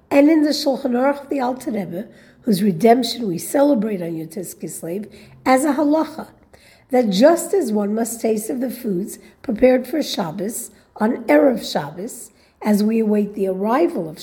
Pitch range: 210-275 Hz